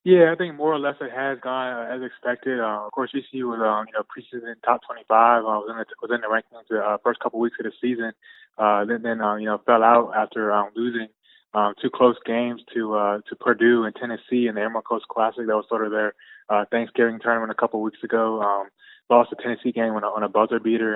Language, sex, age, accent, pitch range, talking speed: English, male, 20-39, American, 105-120 Hz, 255 wpm